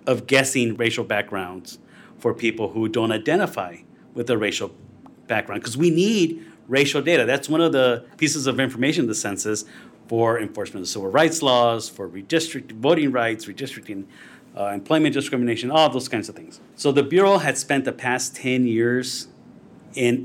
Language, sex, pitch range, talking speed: English, male, 110-140 Hz, 170 wpm